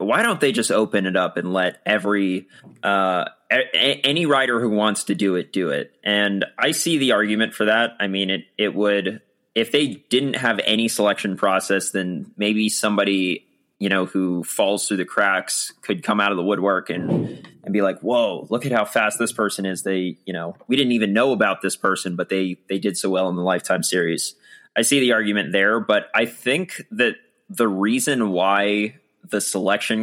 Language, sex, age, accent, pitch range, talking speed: English, male, 20-39, American, 95-115 Hz, 205 wpm